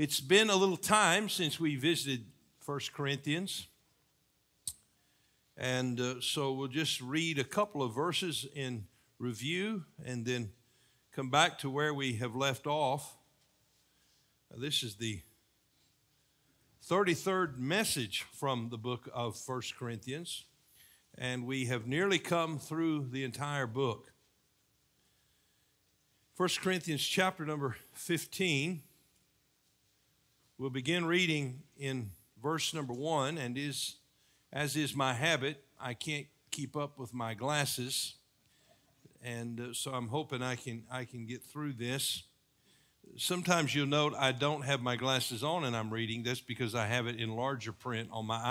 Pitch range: 120-150 Hz